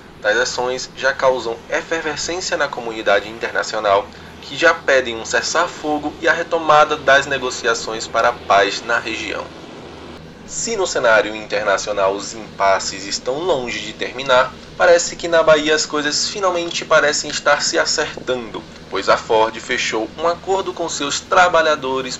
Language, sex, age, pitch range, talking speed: Portuguese, male, 20-39, 115-155 Hz, 145 wpm